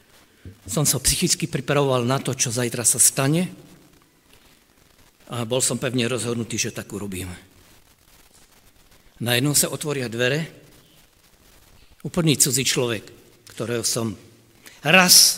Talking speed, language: 115 wpm, Slovak